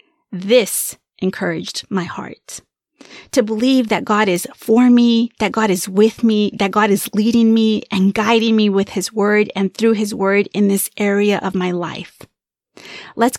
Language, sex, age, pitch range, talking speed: English, female, 30-49, 195-235 Hz, 170 wpm